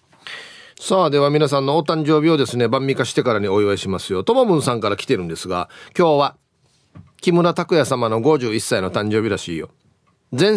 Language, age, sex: Japanese, 40-59, male